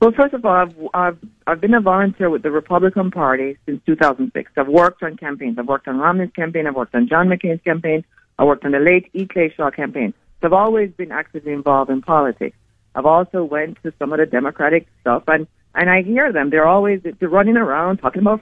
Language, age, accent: English, 50-69, American